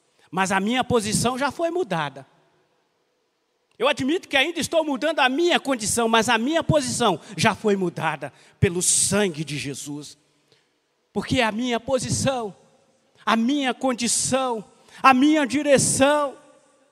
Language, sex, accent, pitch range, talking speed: Portuguese, male, Brazilian, 205-280 Hz, 130 wpm